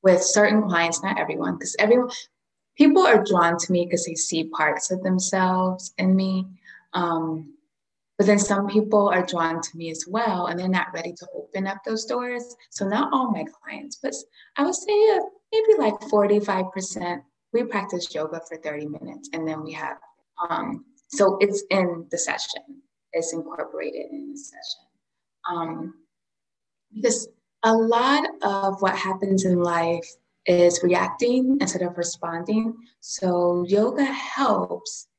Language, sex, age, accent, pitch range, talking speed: English, female, 20-39, American, 175-240 Hz, 155 wpm